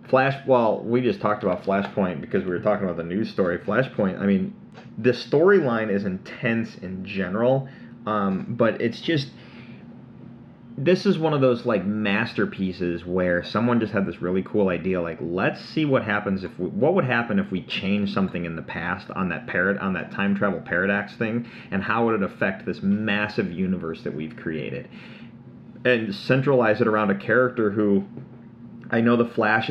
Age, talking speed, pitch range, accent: 30-49, 185 wpm, 95-120 Hz, American